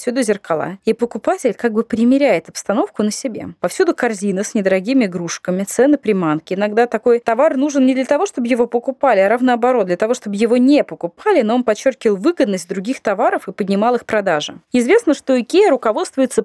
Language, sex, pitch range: Russian, female, 205-275 Hz